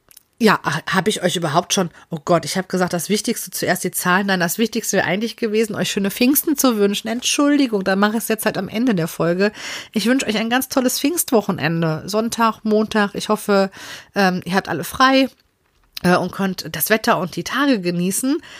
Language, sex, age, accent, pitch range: Japanese, female, 40-59, German, 180-225 Hz